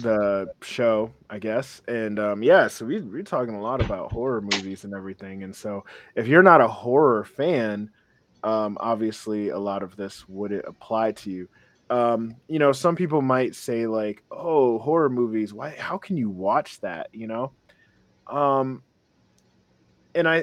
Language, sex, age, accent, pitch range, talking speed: English, male, 20-39, American, 105-145 Hz, 165 wpm